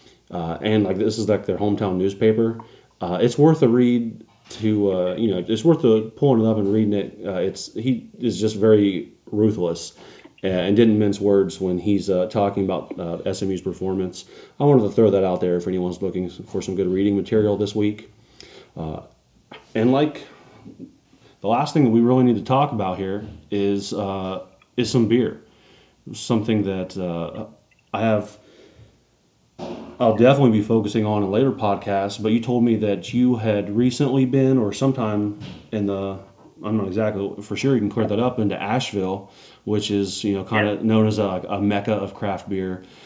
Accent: American